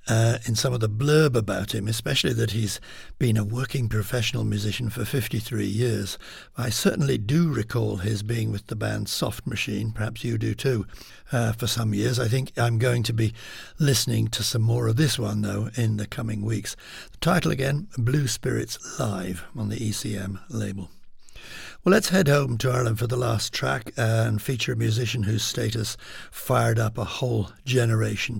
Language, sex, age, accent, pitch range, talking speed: English, male, 60-79, British, 110-125 Hz, 185 wpm